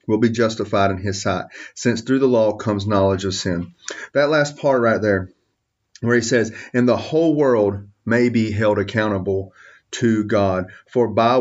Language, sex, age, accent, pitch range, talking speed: English, male, 30-49, American, 110-150 Hz, 180 wpm